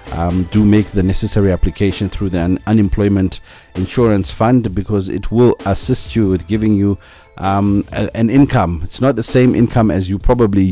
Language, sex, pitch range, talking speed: English, male, 95-115 Hz, 180 wpm